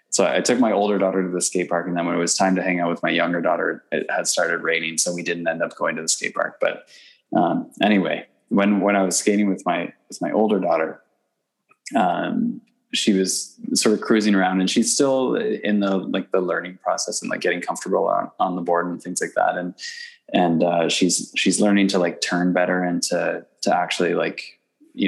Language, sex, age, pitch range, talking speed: English, male, 20-39, 90-100 Hz, 225 wpm